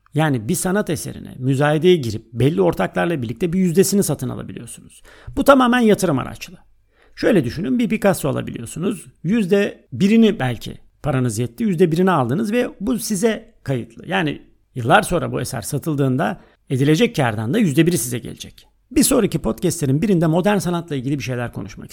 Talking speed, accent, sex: 155 wpm, native, male